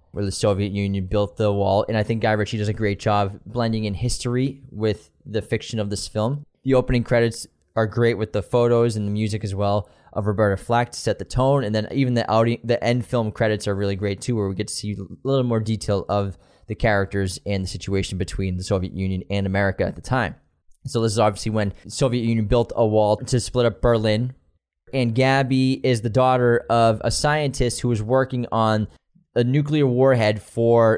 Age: 10-29